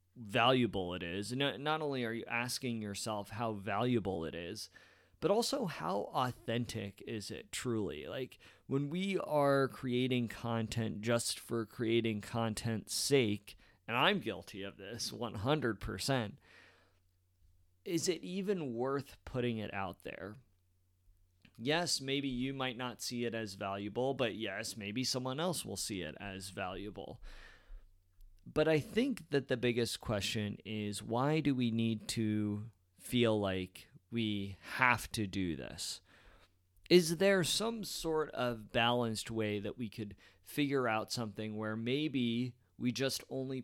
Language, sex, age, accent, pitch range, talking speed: English, male, 30-49, American, 100-130 Hz, 140 wpm